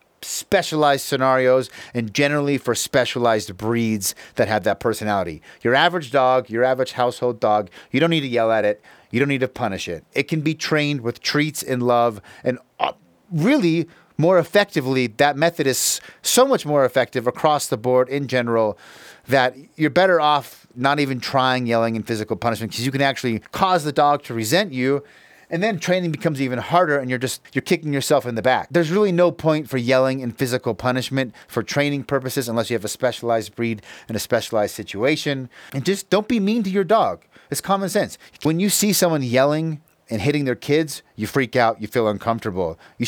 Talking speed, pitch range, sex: 195 wpm, 120-155 Hz, male